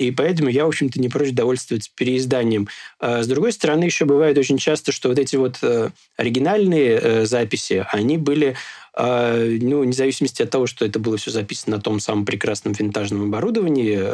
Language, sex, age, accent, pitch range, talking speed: Russian, male, 20-39, native, 115-135 Hz, 185 wpm